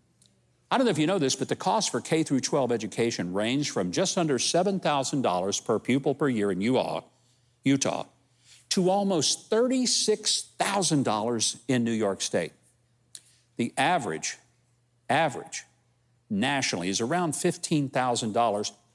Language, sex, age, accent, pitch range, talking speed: English, male, 50-69, American, 110-150 Hz, 125 wpm